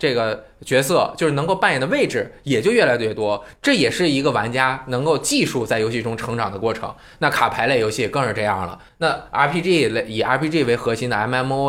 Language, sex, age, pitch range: Chinese, male, 20-39, 105-155 Hz